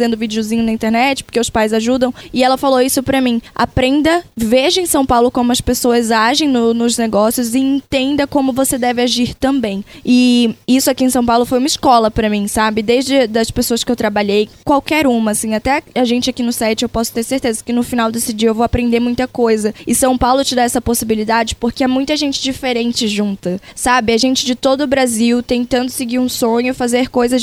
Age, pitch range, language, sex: 10-29, 225-255 Hz, Portuguese, female